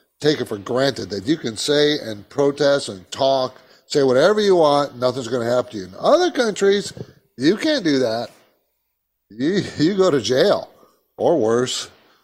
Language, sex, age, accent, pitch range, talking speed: English, male, 50-69, American, 120-150 Hz, 175 wpm